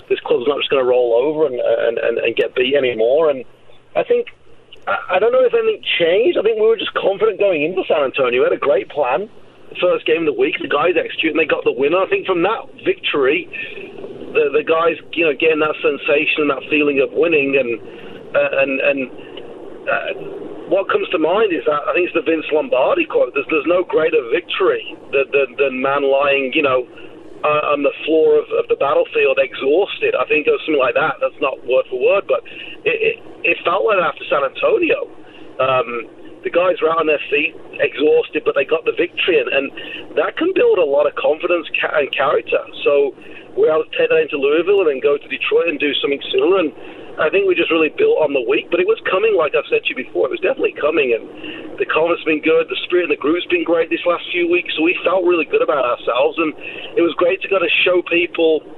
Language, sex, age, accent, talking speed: English, male, 40-59, British, 235 wpm